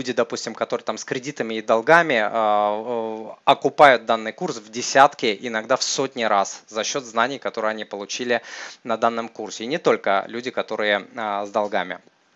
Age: 20-39